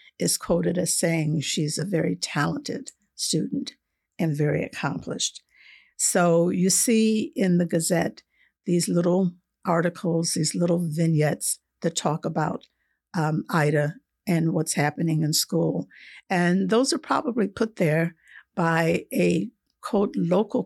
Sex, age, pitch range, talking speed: female, 60-79, 165-200 Hz, 130 wpm